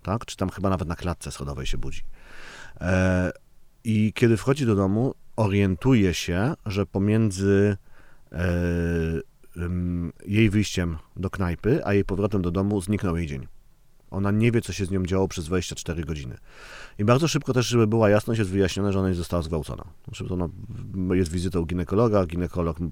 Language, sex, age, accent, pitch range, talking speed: Polish, male, 40-59, native, 90-115 Hz, 175 wpm